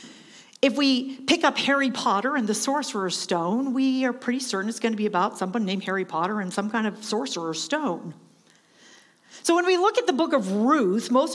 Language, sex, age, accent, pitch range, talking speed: English, female, 50-69, American, 205-275 Hz, 205 wpm